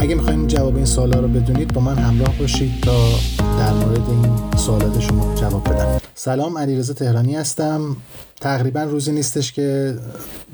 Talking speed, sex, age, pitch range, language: 160 wpm, male, 30-49, 110-130 Hz, Persian